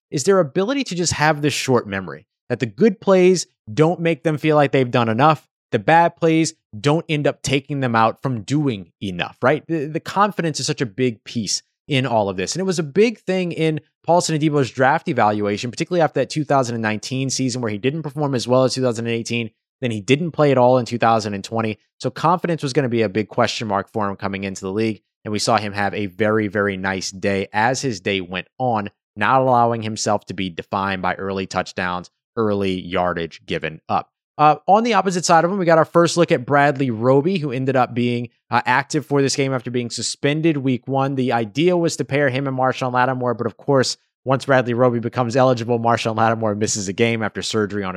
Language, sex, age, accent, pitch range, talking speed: English, male, 20-39, American, 110-150 Hz, 220 wpm